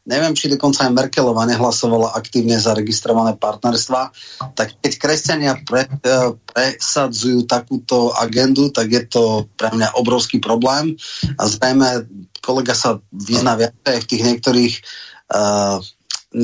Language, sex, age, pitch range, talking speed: Slovak, male, 30-49, 115-130 Hz, 120 wpm